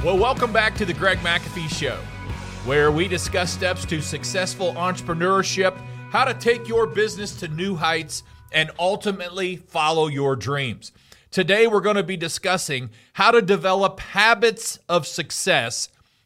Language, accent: English, American